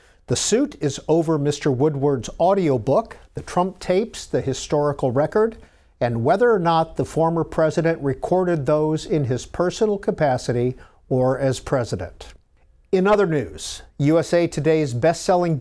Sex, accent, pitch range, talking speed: male, American, 135-175 Hz, 135 wpm